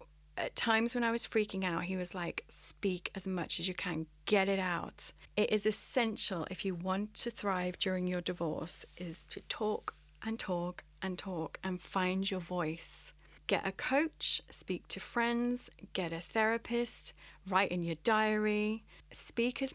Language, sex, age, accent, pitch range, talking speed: English, female, 30-49, British, 175-215 Hz, 170 wpm